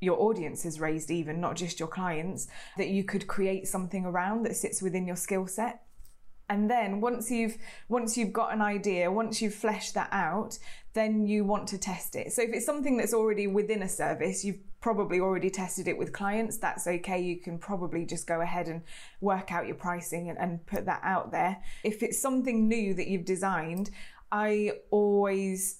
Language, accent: English, British